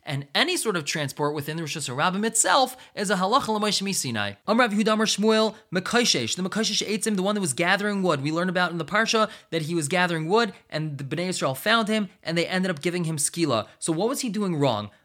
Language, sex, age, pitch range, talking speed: English, male, 20-39, 160-205 Hz, 230 wpm